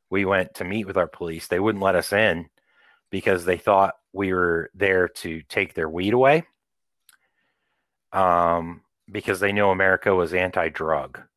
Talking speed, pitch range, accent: 160 wpm, 85-110 Hz, American